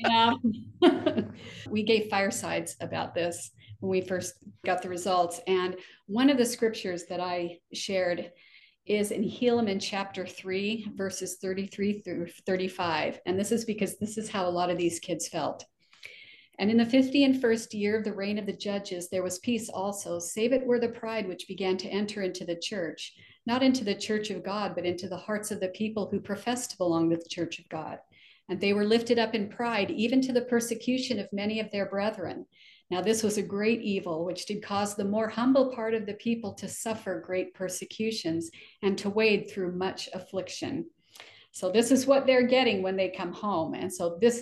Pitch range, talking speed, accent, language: 180-220 Hz, 200 wpm, American, English